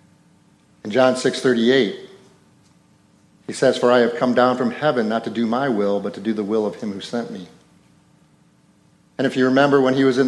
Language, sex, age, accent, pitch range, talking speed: English, male, 50-69, American, 115-140 Hz, 205 wpm